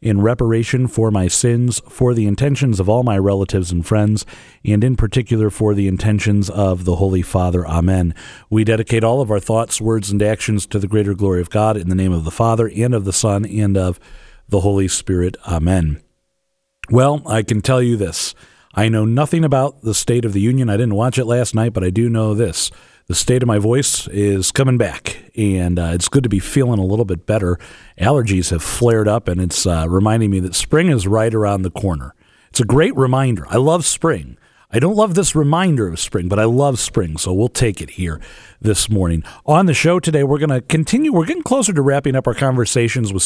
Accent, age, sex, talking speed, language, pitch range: American, 40-59, male, 220 wpm, English, 95-125 Hz